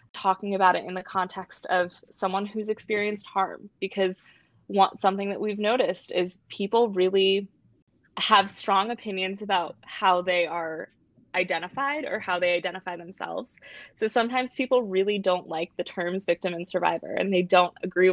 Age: 20-39